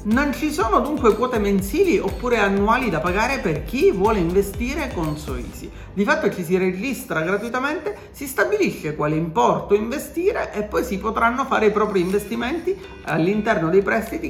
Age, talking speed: 40-59, 160 wpm